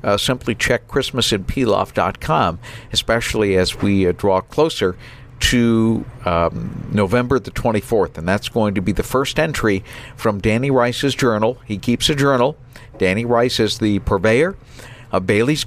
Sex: male